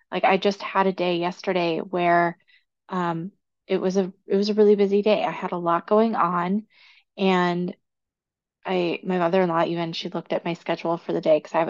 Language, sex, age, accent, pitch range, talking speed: English, female, 20-39, American, 170-215 Hz, 205 wpm